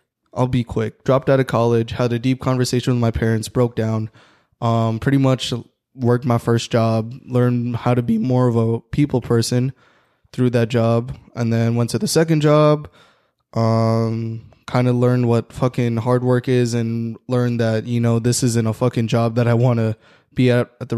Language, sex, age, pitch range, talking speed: English, male, 10-29, 115-125 Hz, 190 wpm